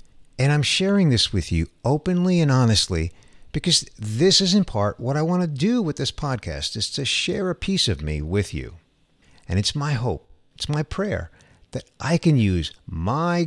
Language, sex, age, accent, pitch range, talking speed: English, male, 50-69, American, 90-145 Hz, 190 wpm